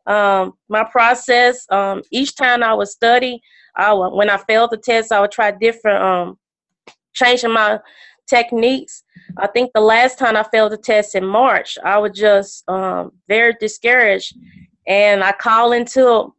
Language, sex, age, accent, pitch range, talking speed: English, female, 30-49, American, 205-235 Hz, 165 wpm